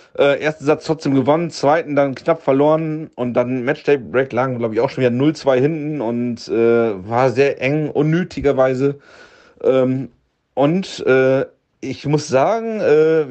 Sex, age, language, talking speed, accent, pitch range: male, 40-59, German, 155 wpm, German, 120-150 Hz